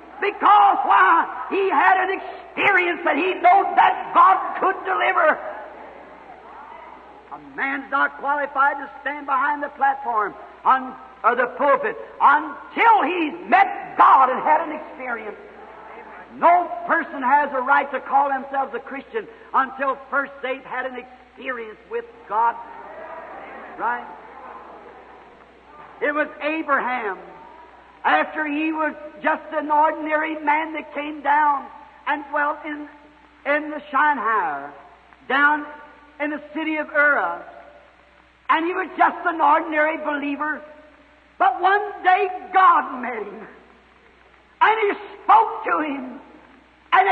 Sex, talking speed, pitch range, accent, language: male, 125 wpm, 290-370 Hz, American, English